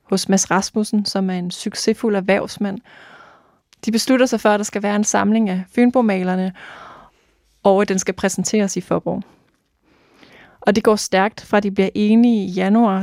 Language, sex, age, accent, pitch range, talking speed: Danish, female, 20-39, native, 190-215 Hz, 170 wpm